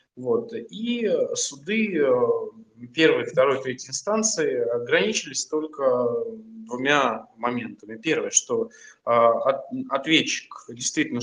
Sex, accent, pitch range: male, native, 130-205 Hz